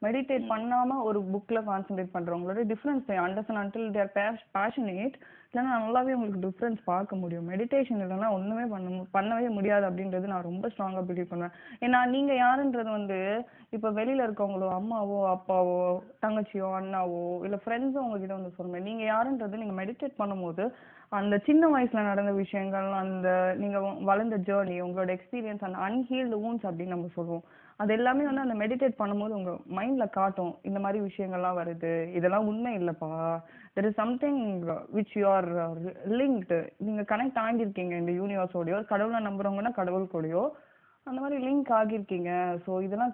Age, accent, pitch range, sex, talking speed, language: 20-39, native, 185-230 Hz, female, 105 wpm, Tamil